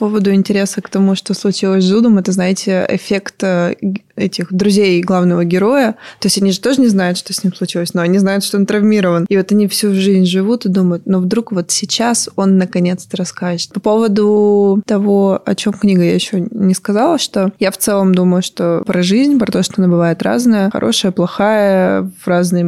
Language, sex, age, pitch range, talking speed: Russian, female, 20-39, 185-210 Hz, 200 wpm